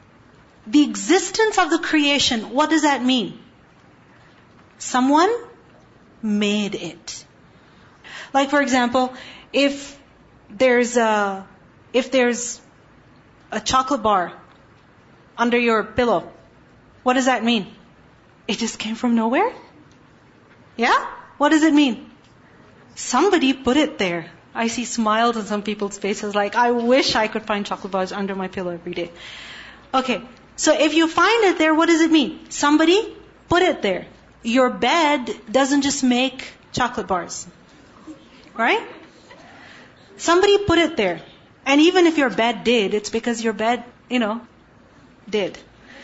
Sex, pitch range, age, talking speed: female, 225-310 Hz, 30-49, 135 wpm